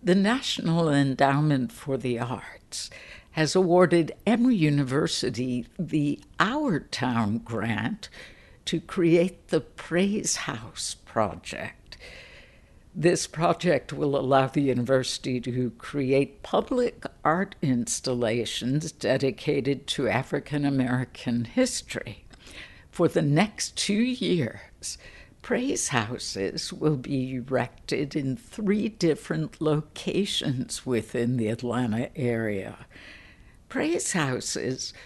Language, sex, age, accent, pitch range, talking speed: English, female, 60-79, American, 125-165 Hz, 95 wpm